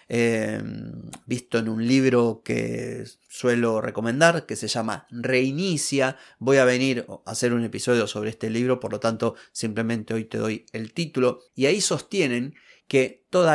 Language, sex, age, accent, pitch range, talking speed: Spanish, male, 30-49, Argentinian, 115-160 Hz, 160 wpm